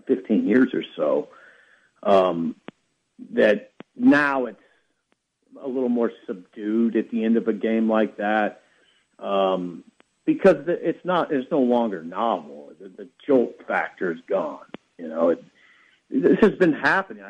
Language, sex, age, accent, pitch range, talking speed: English, male, 50-69, American, 100-165 Hz, 140 wpm